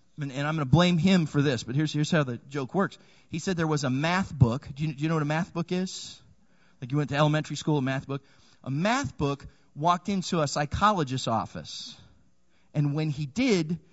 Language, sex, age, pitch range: English, male, 30-49, 145-200 Hz